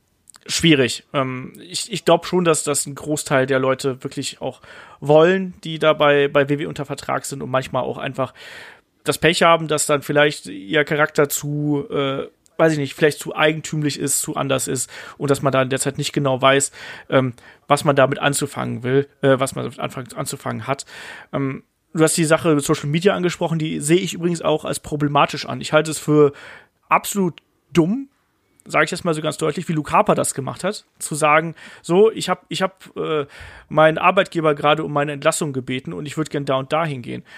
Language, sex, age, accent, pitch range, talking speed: German, male, 30-49, German, 145-170 Hz, 205 wpm